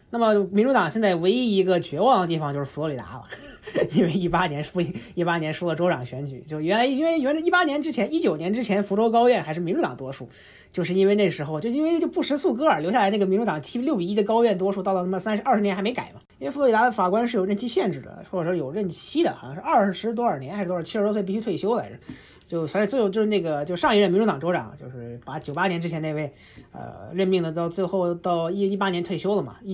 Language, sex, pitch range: Chinese, male, 155-205 Hz